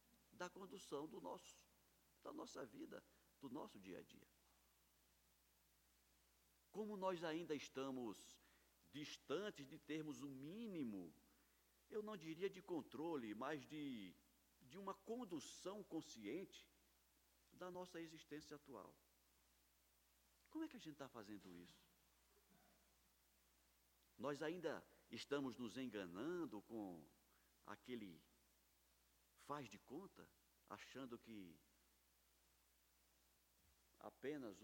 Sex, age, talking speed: male, 60-79, 100 wpm